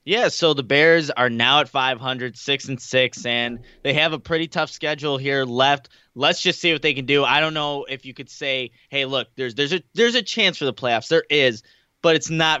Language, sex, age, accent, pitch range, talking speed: English, male, 20-39, American, 135-165 Hz, 235 wpm